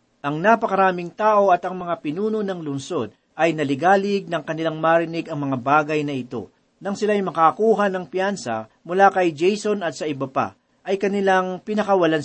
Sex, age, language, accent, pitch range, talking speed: male, 40-59, Filipino, native, 145-190 Hz, 165 wpm